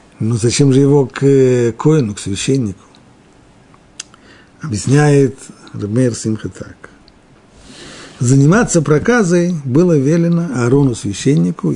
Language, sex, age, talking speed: Russian, male, 50-69, 85 wpm